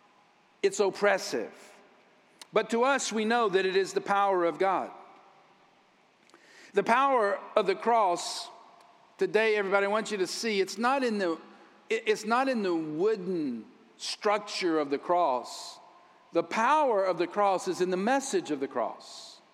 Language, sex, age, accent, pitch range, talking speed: English, male, 50-69, American, 200-265 Hz, 145 wpm